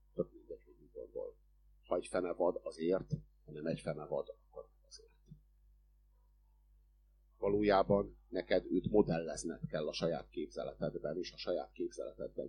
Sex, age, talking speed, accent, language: male, 50-69, 125 wpm, Finnish, German